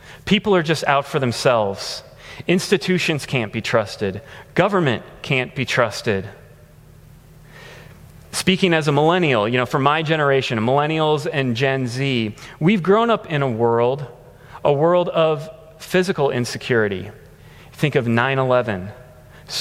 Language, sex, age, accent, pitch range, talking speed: English, male, 30-49, American, 130-180 Hz, 125 wpm